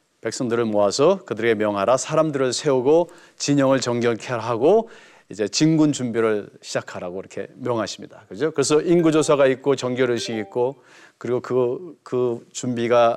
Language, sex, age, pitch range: Korean, male, 40-59, 125-180 Hz